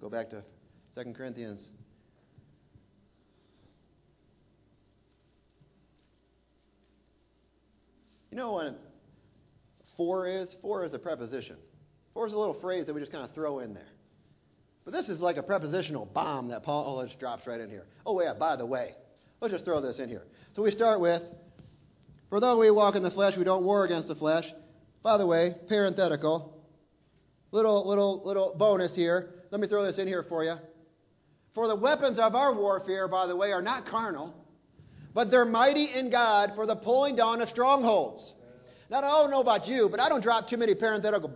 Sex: male